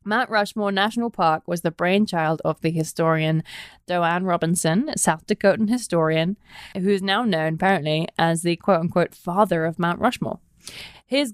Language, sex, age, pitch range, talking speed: English, female, 20-39, 170-235 Hz, 155 wpm